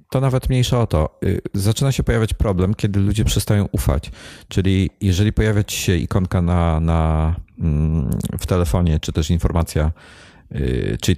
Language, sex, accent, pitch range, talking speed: Polish, male, native, 80-100 Hz, 140 wpm